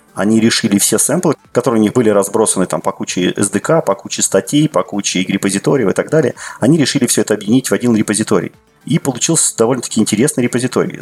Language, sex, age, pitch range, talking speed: Russian, male, 30-49, 95-110 Hz, 190 wpm